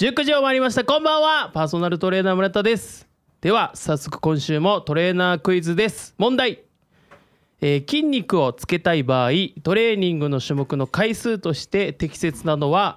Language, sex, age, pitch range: Japanese, male, 20-39, 130-200 Hz